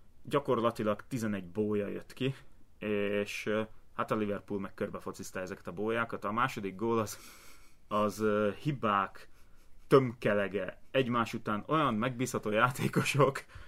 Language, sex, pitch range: Hungarian, male, 100-115 Hz